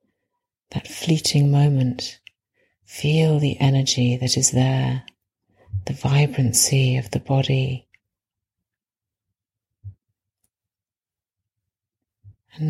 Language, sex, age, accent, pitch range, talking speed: English, female, 40-59, British, 105-140 Hz, 70 wpm